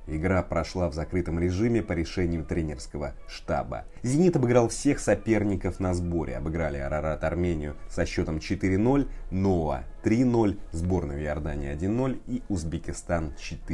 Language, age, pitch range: Russian, 30-49, 80-105 Hz